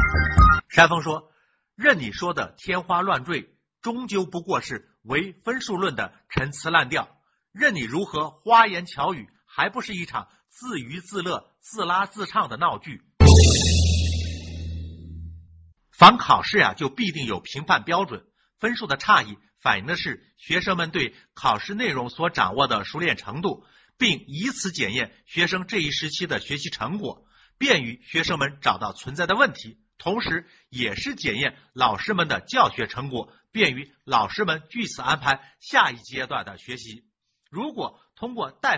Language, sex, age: Chinese, male, 50-69